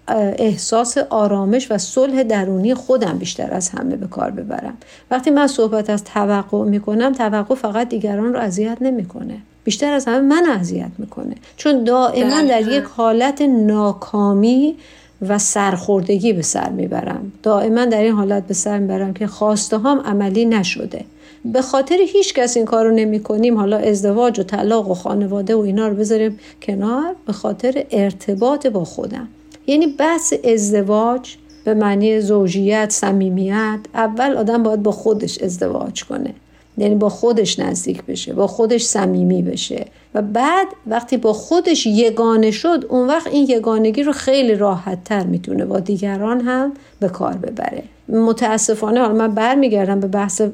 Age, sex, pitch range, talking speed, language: 50-69, female, 205-250 Hz, 155 wpm, Persian